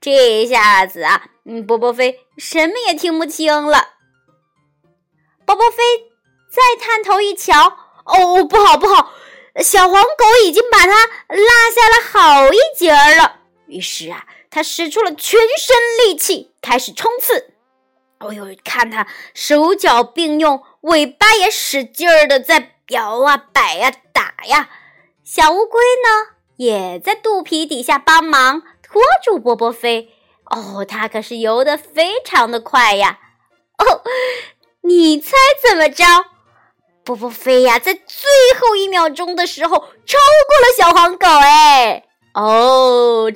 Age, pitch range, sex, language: 20-39, 255-420 Hz, male, Chinese